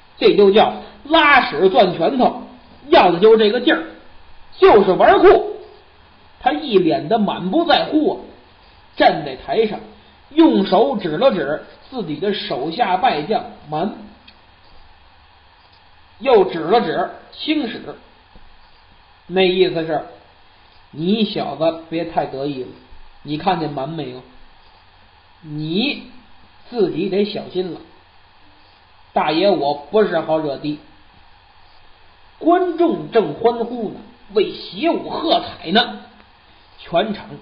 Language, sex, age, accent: Chinese, male, 50-69, native